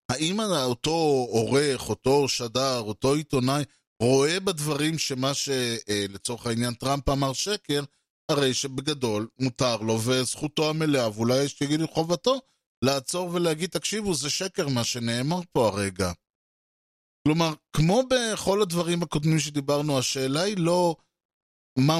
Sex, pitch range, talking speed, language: male, 125-155 Hz, 125 wpm, Hebrew